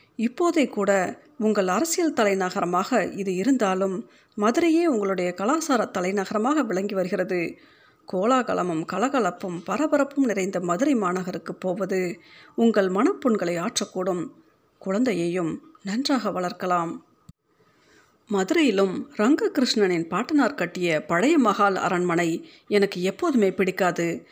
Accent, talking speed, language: native, 90 wpm, Tamil